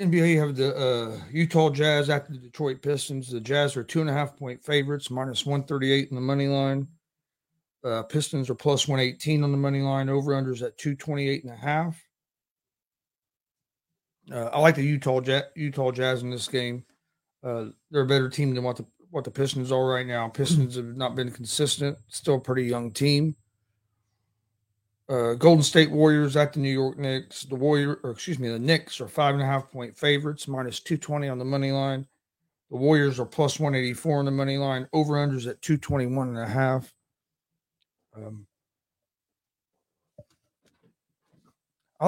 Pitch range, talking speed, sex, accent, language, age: 125-145 Hz, 175 wpm, male, American, English, 40-59